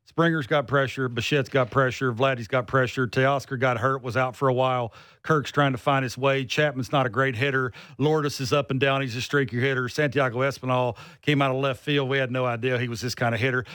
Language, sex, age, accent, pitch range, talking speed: English, male, 40-59, American, 130-155 Hz, 235 wpm